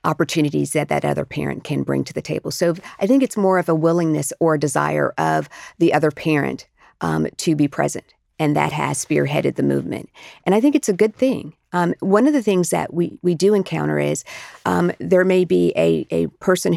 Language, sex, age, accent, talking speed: English, female, 50-69, American, 215 wpm